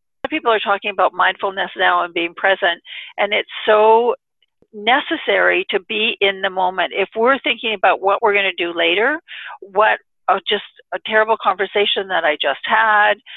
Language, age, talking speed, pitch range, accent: English, 60-79, 175 wpm, 195-235 Hz, American